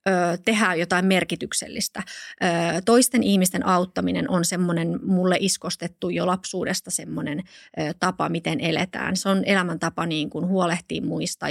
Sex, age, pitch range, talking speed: female, 20-39, 175-210 Hz, 110 wpm